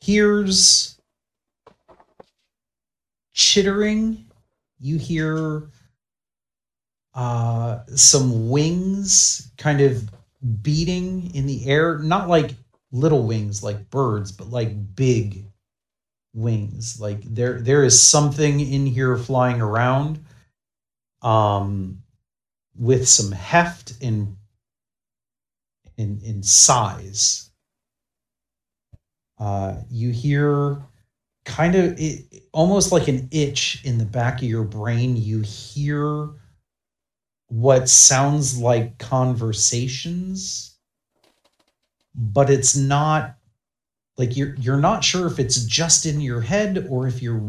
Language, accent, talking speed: English, American, 100 wpm